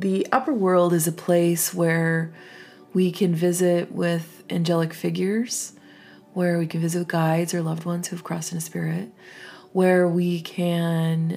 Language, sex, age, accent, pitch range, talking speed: English, female, 30-49, American, 165-185 Hz, 160 wpm